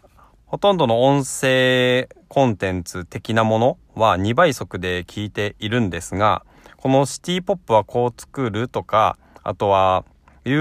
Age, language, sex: 20-39, Japanese, male